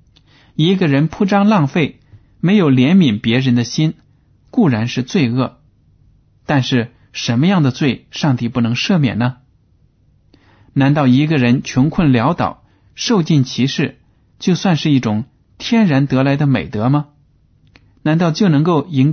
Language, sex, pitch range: Chinese, male, 115-145 Hz